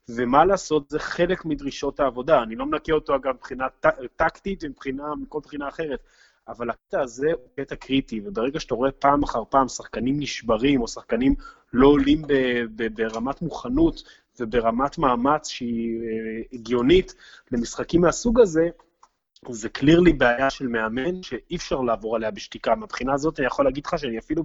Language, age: Hebrew, 30-49